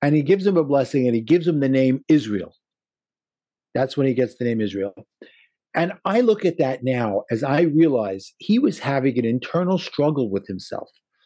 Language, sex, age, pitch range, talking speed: English, male, 50-69, 140-210 Hz, 195 wpm